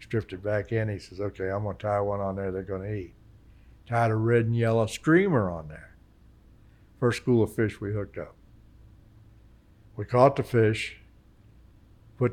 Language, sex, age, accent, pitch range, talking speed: English, male, 60-79, American, 95-110 Hz, 180 wpm